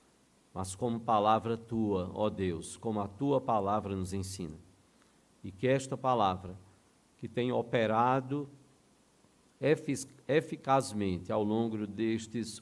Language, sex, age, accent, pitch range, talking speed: Portuguese, male, 50-69, Brazilian, 100-120 Hz, 110 wpm